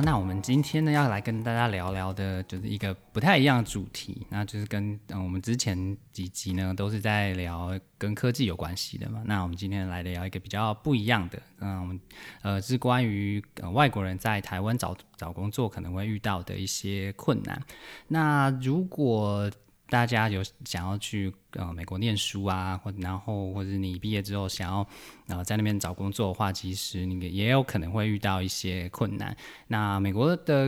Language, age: Chinese, 20-39